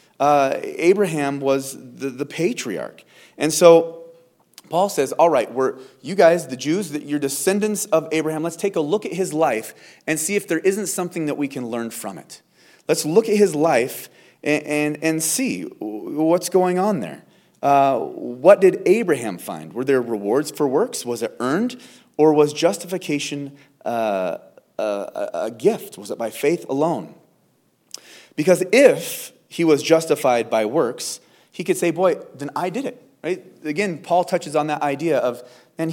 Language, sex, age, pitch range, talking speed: English, male, 30-49, 140-180 Hz, 170 wpm